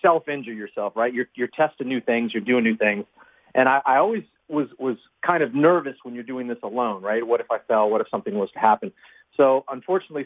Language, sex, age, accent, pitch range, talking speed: English, male, 30-49, American, 115-150 Hz, 230 wpm